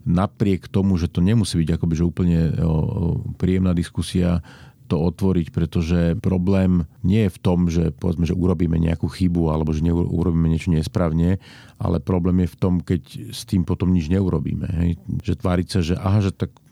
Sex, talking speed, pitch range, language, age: male, 180 wpm, 85-95 Hz, Slovak, 40-59